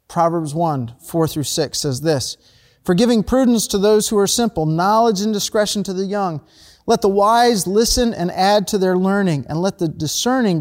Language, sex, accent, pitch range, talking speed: English, male, American, 165-215 Hz, 190 wpm